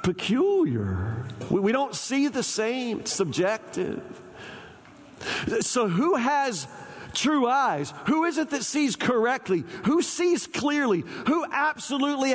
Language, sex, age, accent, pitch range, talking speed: English, male, 40-59, American, 215-275 Hz, 115 wpm